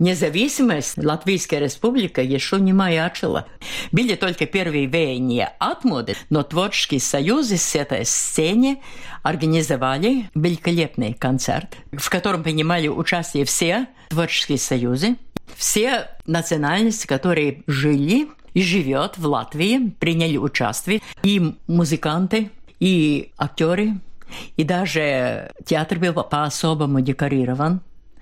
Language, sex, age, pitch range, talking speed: Russian, female, 50-69, 140-190 Hz, 100 wpm